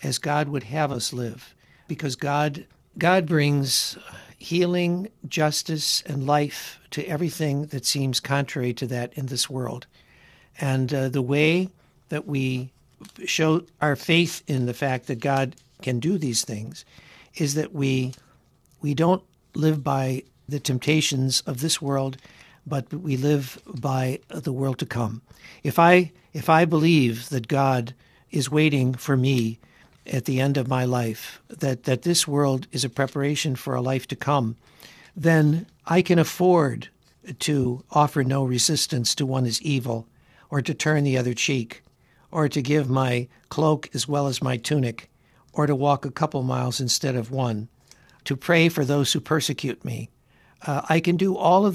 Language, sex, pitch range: English, male, 130-155 Hz